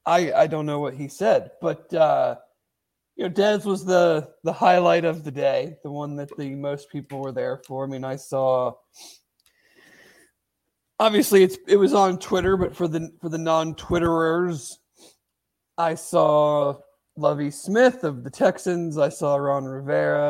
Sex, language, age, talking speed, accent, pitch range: male, English, 40-59, 165 wpm, American, 140-180 Hz